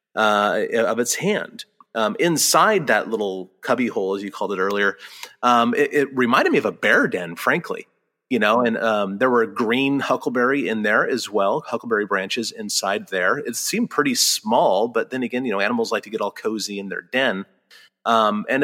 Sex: male